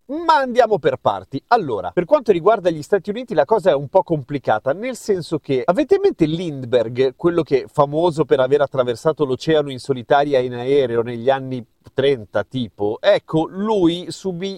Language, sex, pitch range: Italian, male, 135-180 Hz